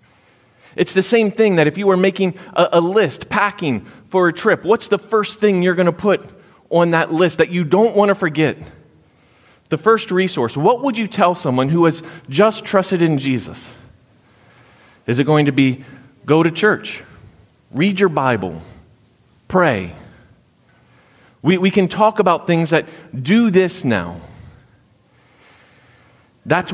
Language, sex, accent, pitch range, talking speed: English, male, American, 145-200 Hz, 155 wpm